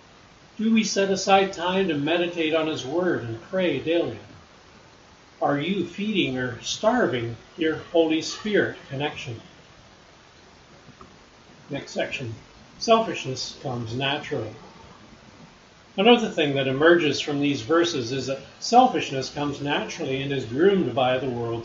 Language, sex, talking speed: English, male, 125 wpm